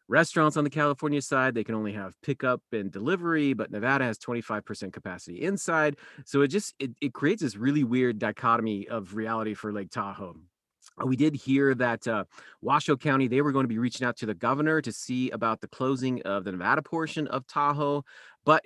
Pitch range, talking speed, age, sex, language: 110-145 Hz, 200 wpm, 30-49, male, English